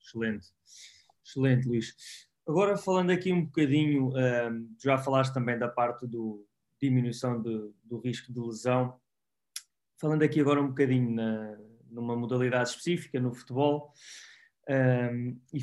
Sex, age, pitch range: male, 20-39, 115-145 Hz